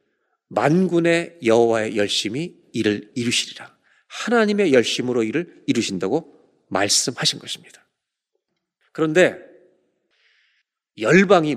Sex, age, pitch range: male, 40-59, 135-220 Hz